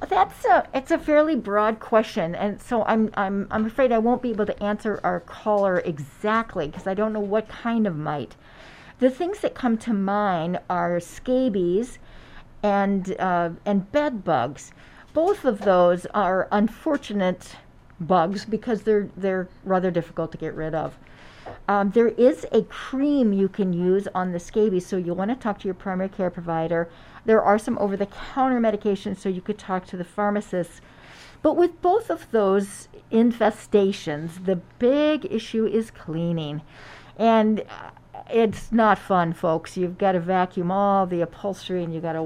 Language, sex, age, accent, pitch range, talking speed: English, female, 50-69, American, 180-225 Hz, 170 wpm